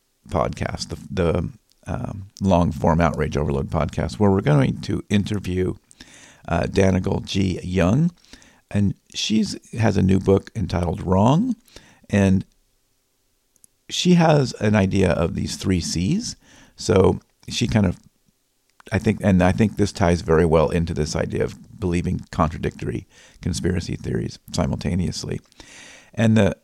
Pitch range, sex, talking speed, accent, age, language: 85-115 Hz, male, 135 wpm, American, 50-69, English